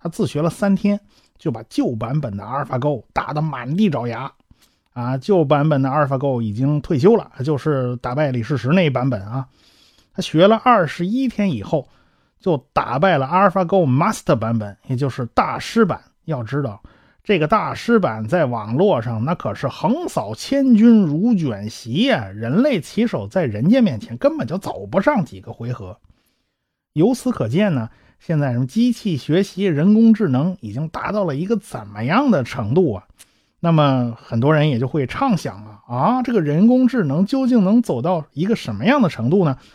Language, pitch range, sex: Chinese, 130-205 Hz, male